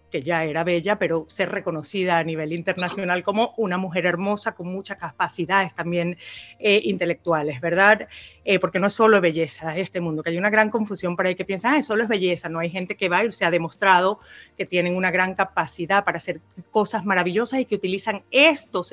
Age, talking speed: 30-49, 205 wpm